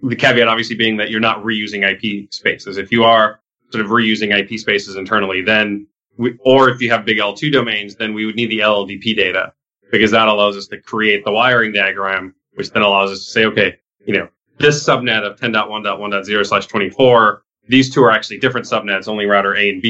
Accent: American